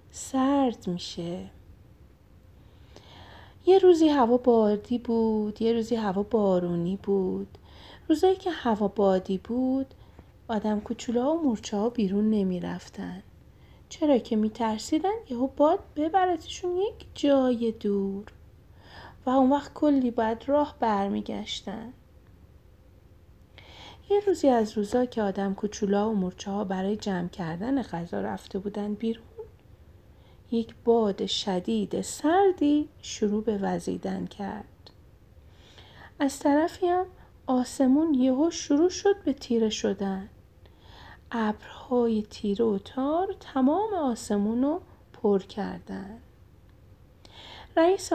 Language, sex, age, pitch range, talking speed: Persian, female, 30-49, 185-275 Hz, 105 wpm